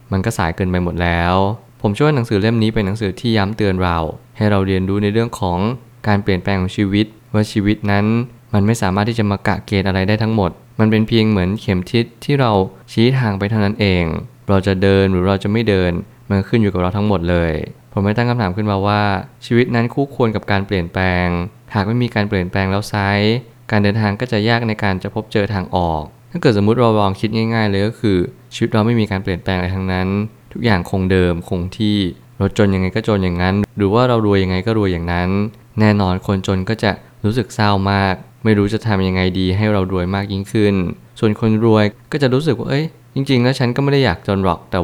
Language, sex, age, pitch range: Thai, male, 20-39, 95-115 Hz